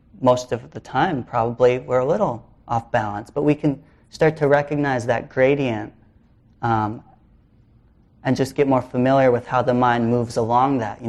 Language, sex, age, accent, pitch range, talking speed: English, male, 30-49, American, 110-130 Hz, 175 wpm